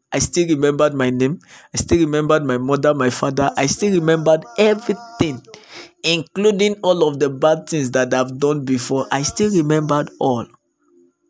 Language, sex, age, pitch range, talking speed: English, male, 20-39, 140-220 Hz, 160 wpm